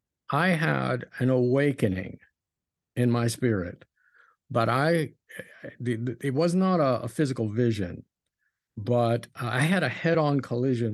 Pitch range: 120-150 Hz